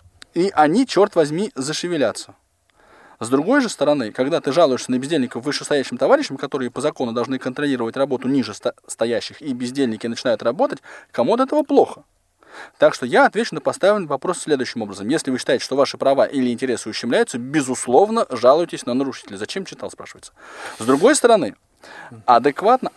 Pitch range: 120-170 Hz